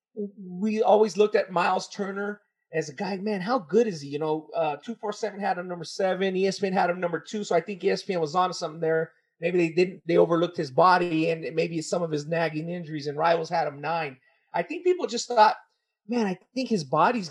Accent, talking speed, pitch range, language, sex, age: American, 225 wpm, 180-225 Hz, English, male, 30-49